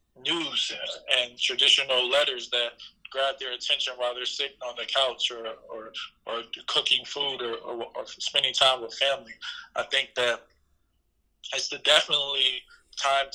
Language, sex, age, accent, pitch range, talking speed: English, male, 20-39, American, 120-135 Hz, 145 wpm